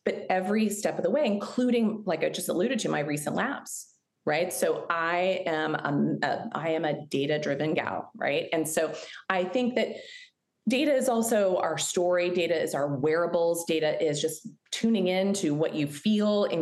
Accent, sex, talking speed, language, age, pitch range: American, female, 180 wpm, English, 30-49, 150-215 Hz